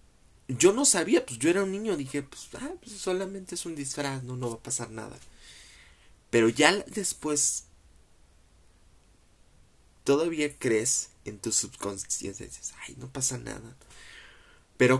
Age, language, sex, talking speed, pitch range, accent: 30-49, Spanish, male, 150 wpm, 110-145 Hz, Mexican